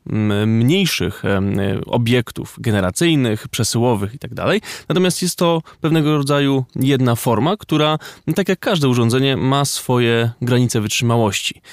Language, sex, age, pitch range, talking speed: Polish, male, 20-39, 115-140 Hz, 105 wpm